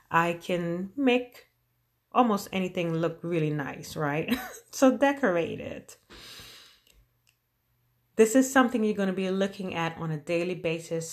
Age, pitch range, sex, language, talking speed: 30-49, 140-175 Hz, female, English, 135 wpm